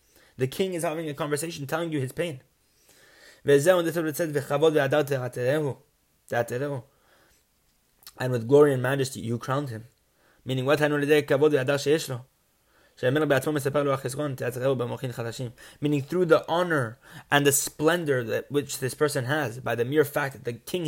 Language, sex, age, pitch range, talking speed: English, male, 20-39, 115-150 Hz, 110 wpm